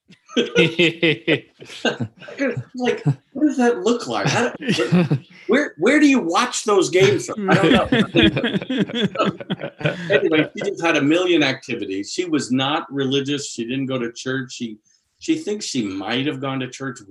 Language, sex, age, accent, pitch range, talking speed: English, male, 50-69, American, 115-175 Hz, 145 wpm